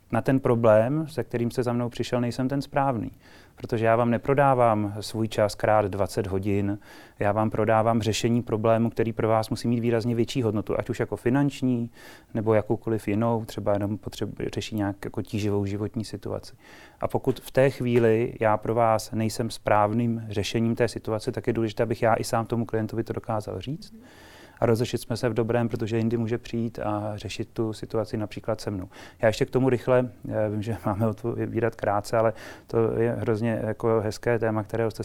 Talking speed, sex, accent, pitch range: 195 wpm, male, native, 105-120 Hz